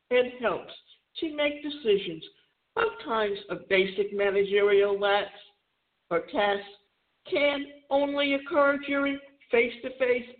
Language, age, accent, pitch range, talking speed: English, 60-79, American, 210-290 Hz, 105 wpm